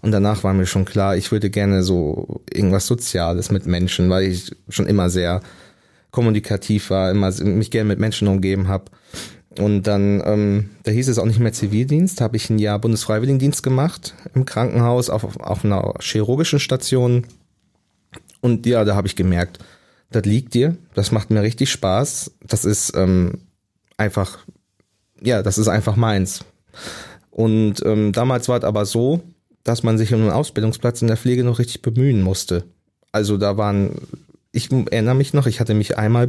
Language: German